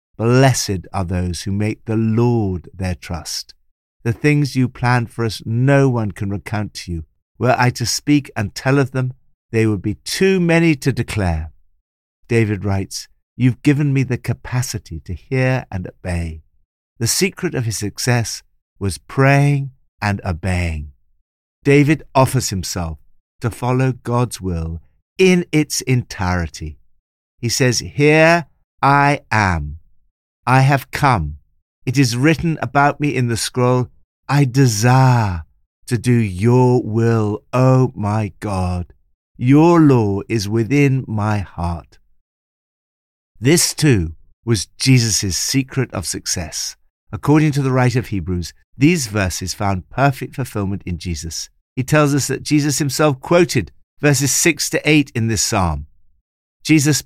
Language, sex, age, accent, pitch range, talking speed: English, male, 50-69, British, 90-130 Hz, 140 wpm